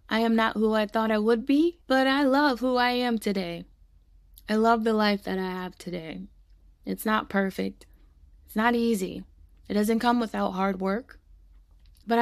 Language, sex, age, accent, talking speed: English, female, 20-39, American, 180 wpm